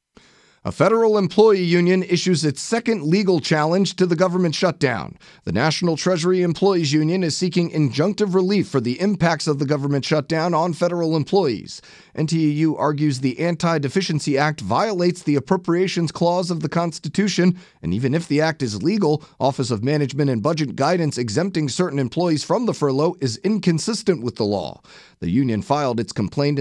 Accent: American